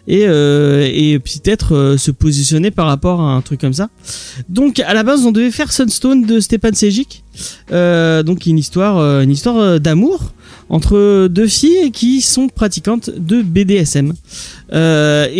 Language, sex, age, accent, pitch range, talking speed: French, male, 30-49, French, 145-220 Hz, 160 wpm